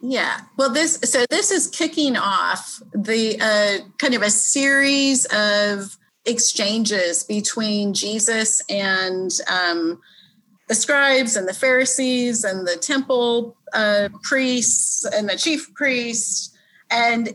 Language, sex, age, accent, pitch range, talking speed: English, female, 30-49, American, 205-255 Hz, 120 wpm